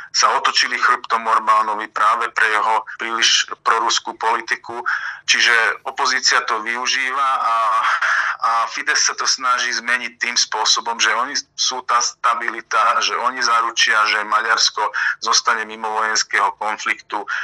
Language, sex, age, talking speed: Slovak, male, 40-59, 125 wpm